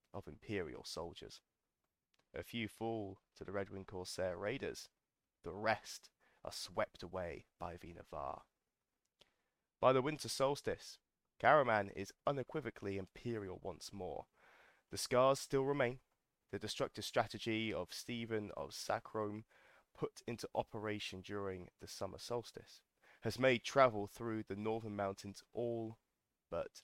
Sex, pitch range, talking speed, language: male, 95-115 Hz, 125 wpm, English